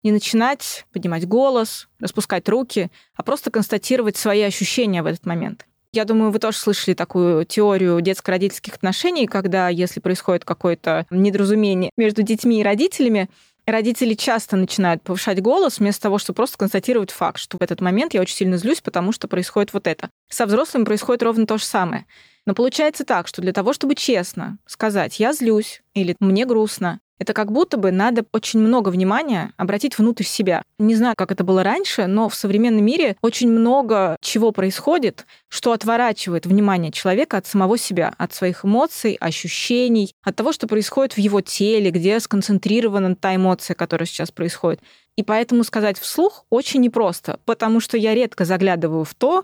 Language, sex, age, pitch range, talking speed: Russian, female, 20-39, 190-230 Hz, 170 wpm